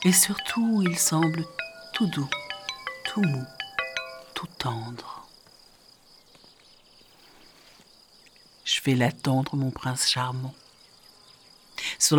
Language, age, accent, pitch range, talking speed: French, 60-79, French, 130-205 Hz, 85 wpm